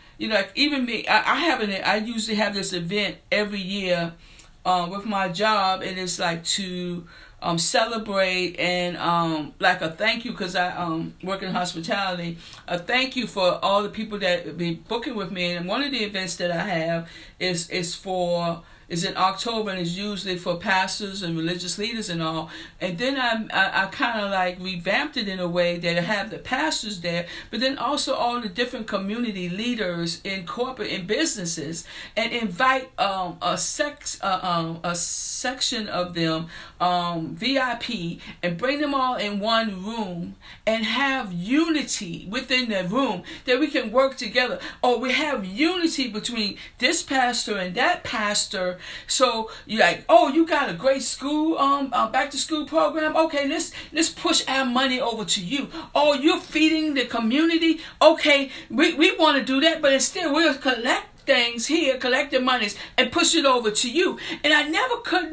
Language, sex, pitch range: English, female, 180-270 Hz